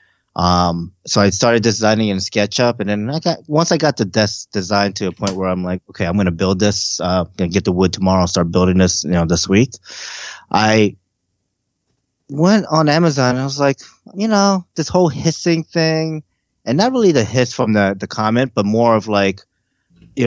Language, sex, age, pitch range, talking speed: English, male, 20-39, 90-120 Hz, 205 wpm